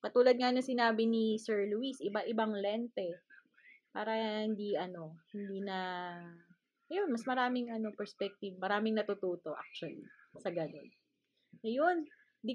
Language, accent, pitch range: Filipino, native, 195-240 Hz